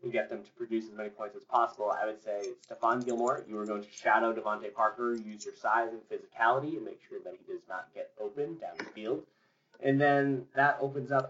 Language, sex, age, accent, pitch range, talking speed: English, male, 20-39, American, 115-155 Hz, 235 wpm